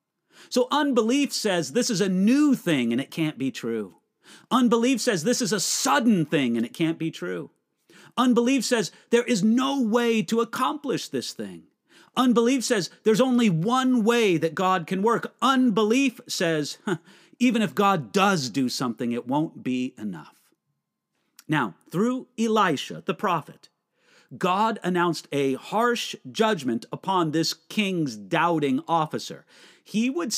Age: 40-59